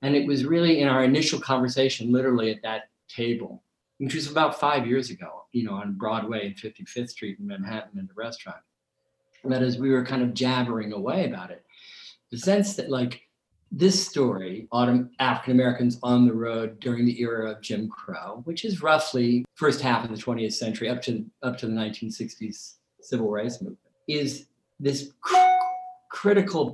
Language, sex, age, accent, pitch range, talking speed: English, male, 50-69, American, 115-150 Hz, 180 wpm